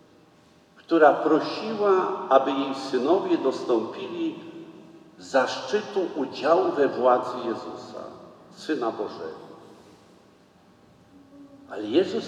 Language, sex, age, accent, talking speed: Polish, male, 50-69, native, 75 wpm